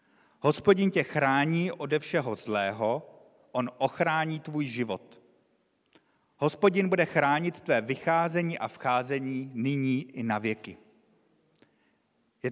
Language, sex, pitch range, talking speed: Czech, male, 125-165 Hz, 105 wpm